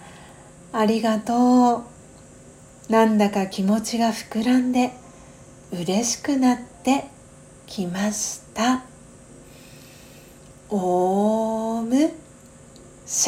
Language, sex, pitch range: Japanese, female, 190-240 Hz